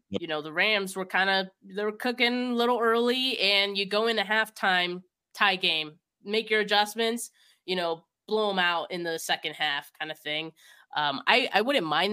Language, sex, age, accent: English, female, 20-39, American